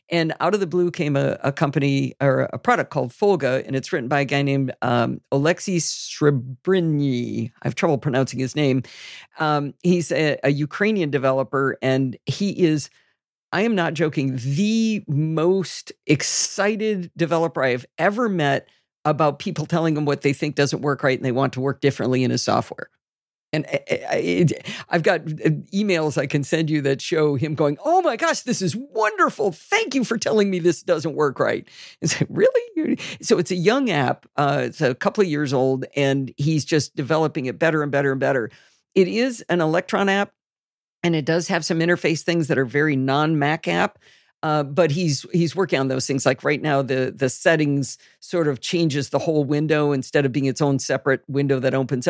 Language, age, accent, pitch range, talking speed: English, 50-69, American, 135-175 Hz, 195 wpm